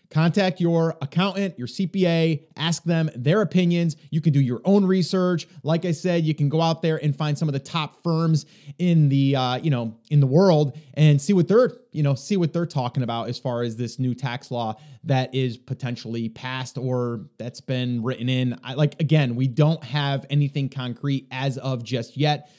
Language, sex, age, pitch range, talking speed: English, male, 30-49, 140-180 Hz, 205 wpm